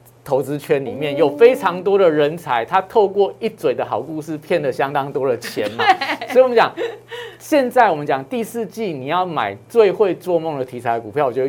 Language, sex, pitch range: Chinese, male, 150-225 Hz